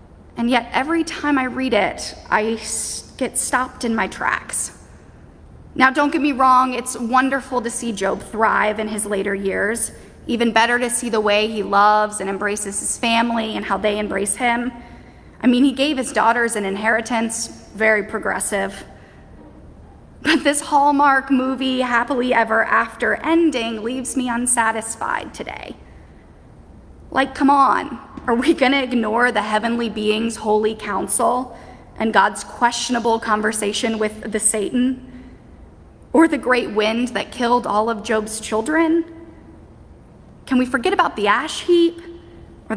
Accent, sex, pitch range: American, female, 215-260 Hz